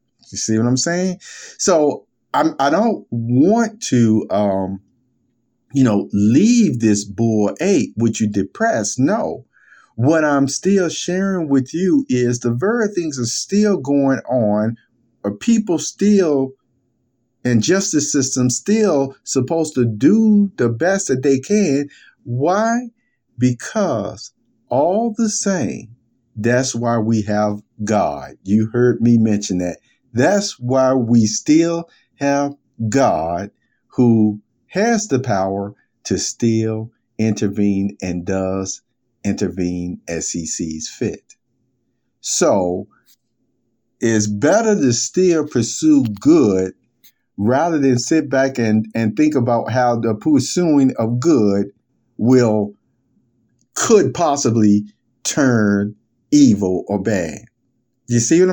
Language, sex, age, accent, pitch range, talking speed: English, male, 50-69, American, 110-150 Hz, 120 wpm